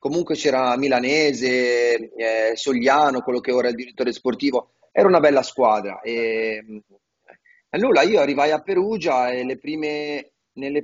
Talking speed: 145 wpm